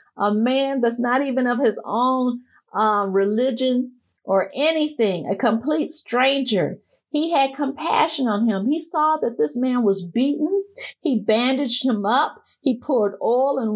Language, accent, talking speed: English, American, 155 wpm